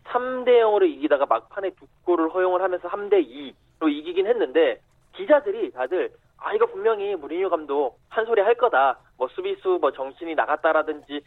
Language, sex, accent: Korean, male, native